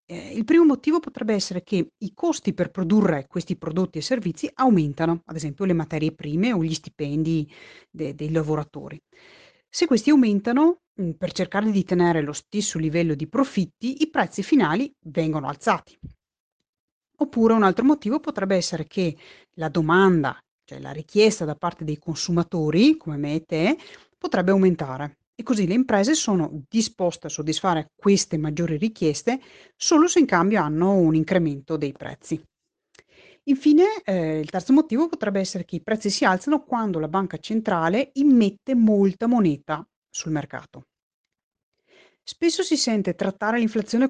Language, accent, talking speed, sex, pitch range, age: Italian, native, 150 wpm, female, 160-235 Hz, 30-49